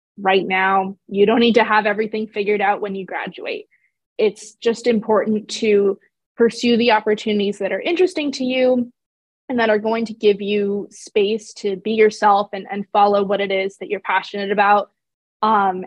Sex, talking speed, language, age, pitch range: female, 180 wpm, English, 20-39, 200-230 Hz